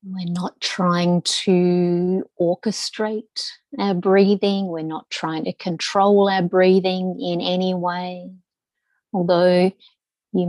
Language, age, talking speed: English, 30-49, 110 wpm